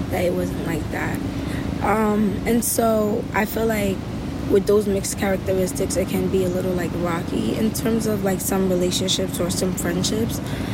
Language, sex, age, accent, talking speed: English, female, 20-39, American, 175 wpm